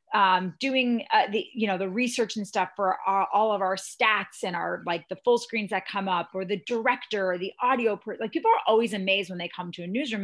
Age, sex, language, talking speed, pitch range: 30-49, female, English, 250 wpm, 190-270 Hz